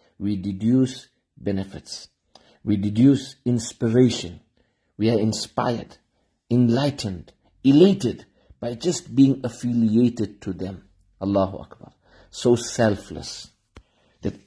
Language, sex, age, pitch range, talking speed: English, male, 50-69, 100-130 Hz, 90 wpm